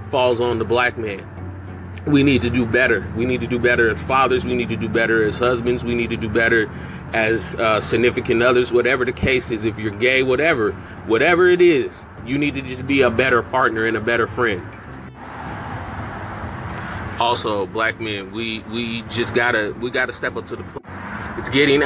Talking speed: 195 wpm